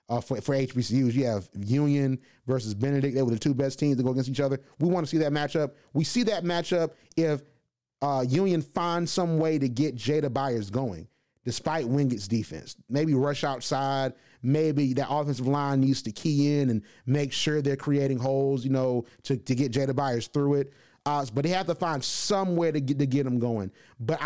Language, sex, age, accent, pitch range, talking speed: English, male, 30-49, American, 135-175 Hz, 210 wpm